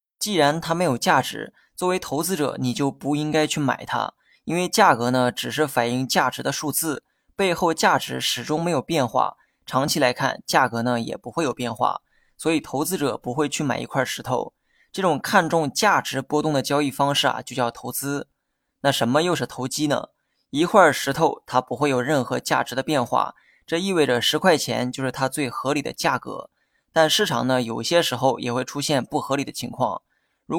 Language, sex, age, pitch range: Chinese, male, 20-39, 125-155 Hz